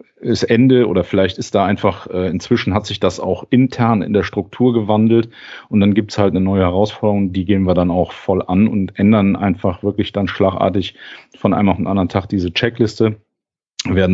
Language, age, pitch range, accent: German, 40-59, 95-110 Hz, German